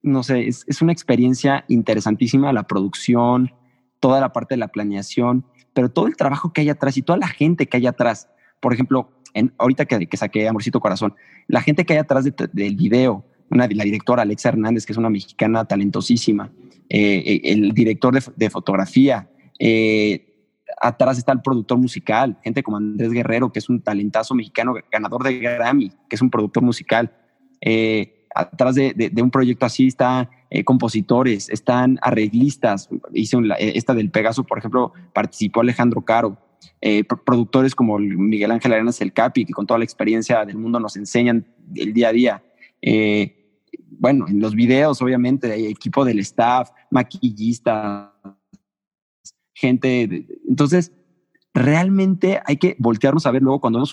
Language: Spanish